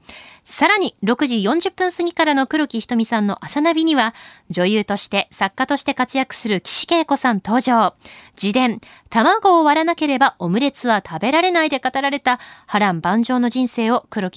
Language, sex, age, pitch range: Japanese, female, 20-39, 190-280 Hz